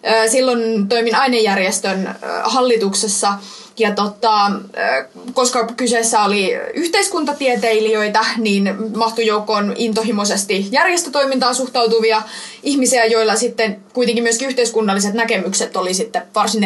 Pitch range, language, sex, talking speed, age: 210-250 Hz, Finnish, female, 90 wpm, 20-39